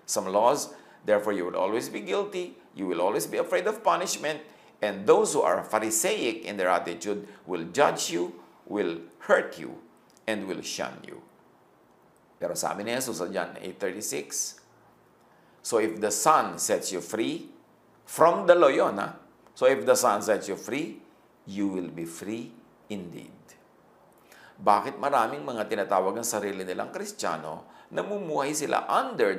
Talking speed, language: 140 wpm, English